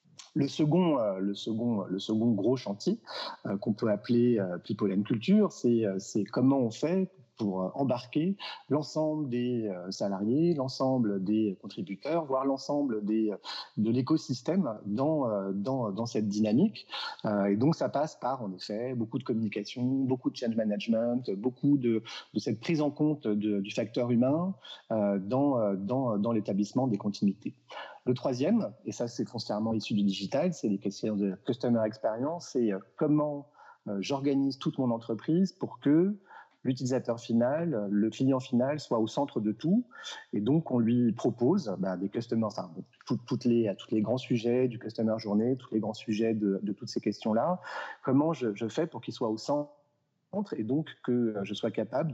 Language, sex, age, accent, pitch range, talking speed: French, male, 40-59, French, 105-135 Hz, 165 wpm